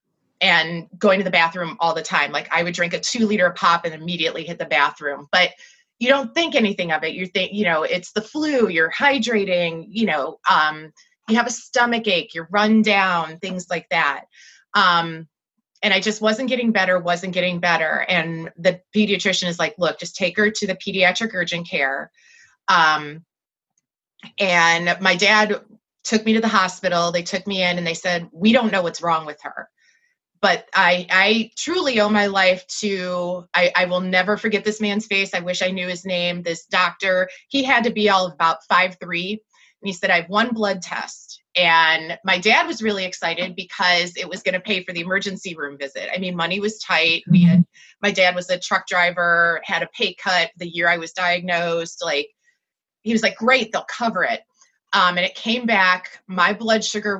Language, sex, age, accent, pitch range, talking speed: English, female, 30-49, American, 175-210 Hz, 200 wpm